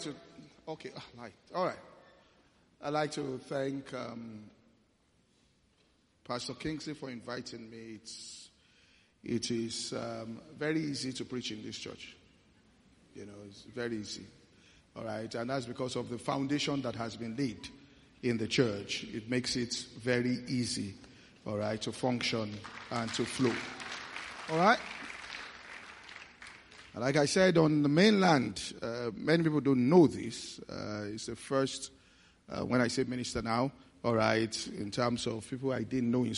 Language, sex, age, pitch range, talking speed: English, male, 50-69, 110-135 Hz, 150 wpm